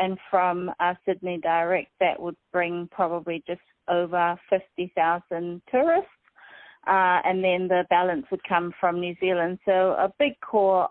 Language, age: English, 30-49